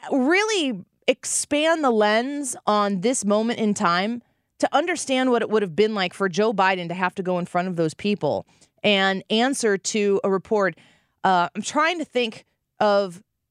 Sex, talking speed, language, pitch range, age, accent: female, 180 wpm, English, 170-225 Hz, 30-49, American